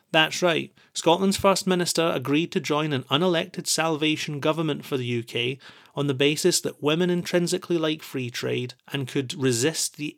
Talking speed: 165 wpm